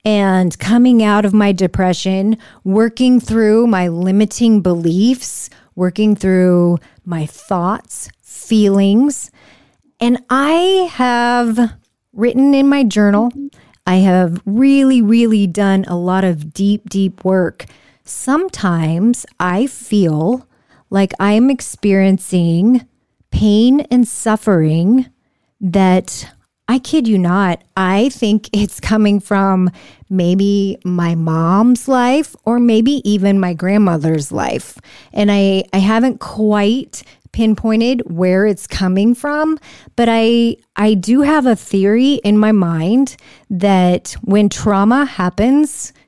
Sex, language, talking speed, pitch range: female, English, 115 wpm, 190-240 Hz